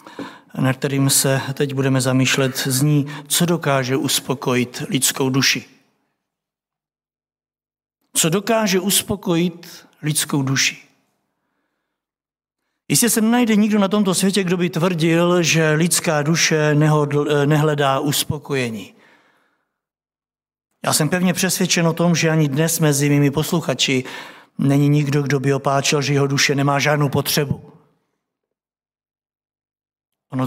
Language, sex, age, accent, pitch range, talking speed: Czech, male, 60-79, native, 145-200 Hz, 110 wpm